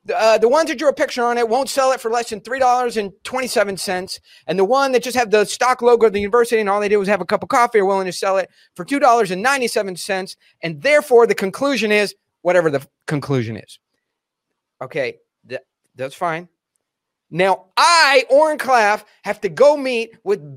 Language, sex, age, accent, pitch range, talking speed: English, male, 30-49, American, 170-240 Hz, 210 wpm